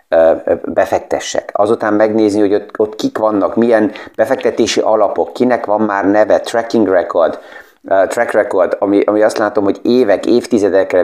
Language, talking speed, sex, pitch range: Hungarian, 140 wpm, male, 95-115 Hz